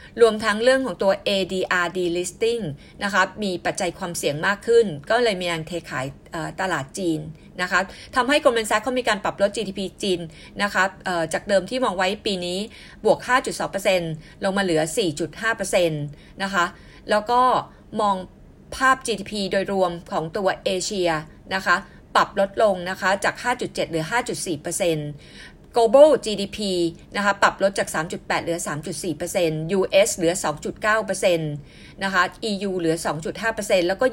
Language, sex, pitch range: Thai, female, 170-215 Hz